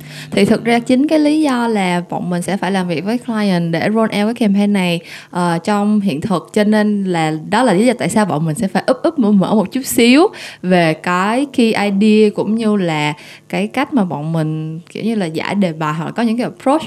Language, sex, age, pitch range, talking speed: Vietnamese, female, 20-39, 170-245 Hz, 250 wpm